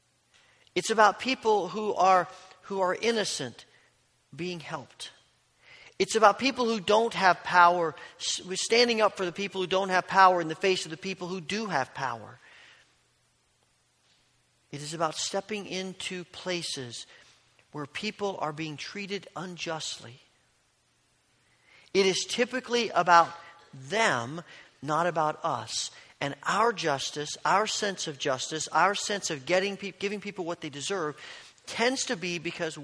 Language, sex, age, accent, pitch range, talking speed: English, male, 50-69, American, 150-195 Hz, 145 wpm